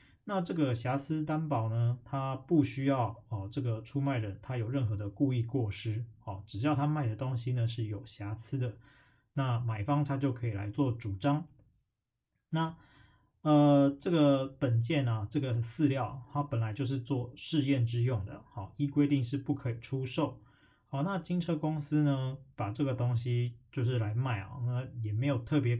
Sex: male